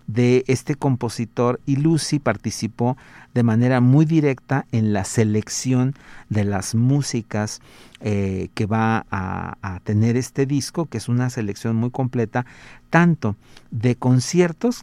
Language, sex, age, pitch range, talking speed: Spanish, male, 50-69, 105-130 Hz, 135 wpm